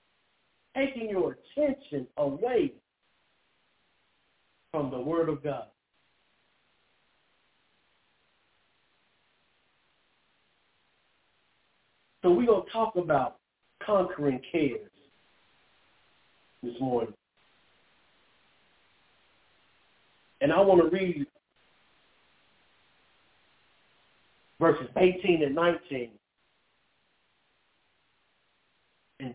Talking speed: 60 wpm